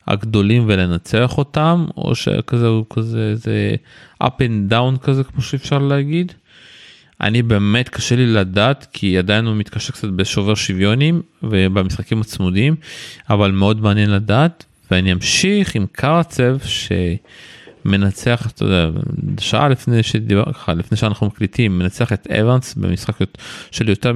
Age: 30-49